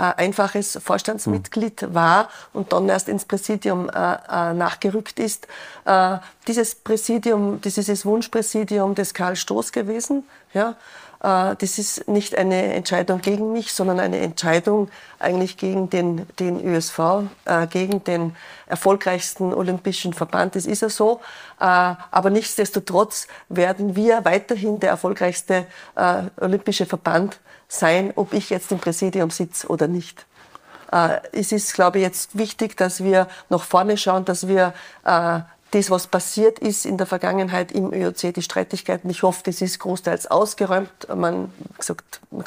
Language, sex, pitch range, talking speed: German, female, 180-205 Hz, 140 wpm